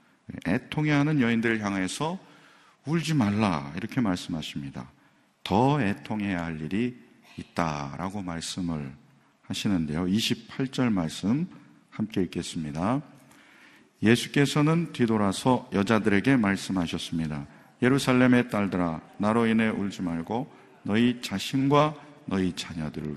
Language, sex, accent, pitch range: Korean, male, native, 90-130 Hz